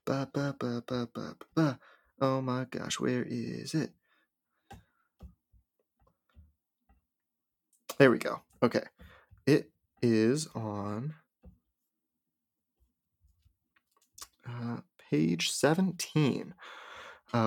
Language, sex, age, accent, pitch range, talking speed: English, male, 20-39, American, 115-155 Hz, 80 wpm